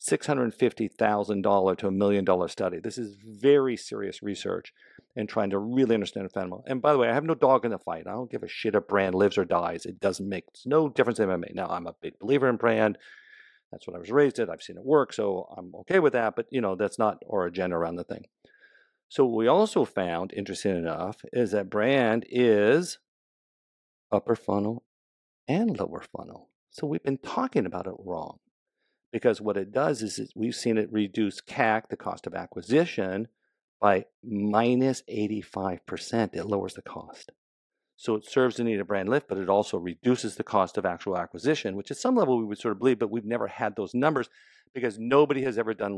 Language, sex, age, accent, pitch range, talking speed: English, male, 50-69, American, 100-135 Hz, 210 wpm